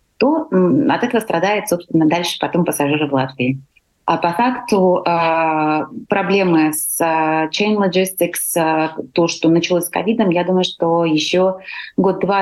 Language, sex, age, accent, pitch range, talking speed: Russian, female, 30-49, native, 155-180 Hz, 140 wpm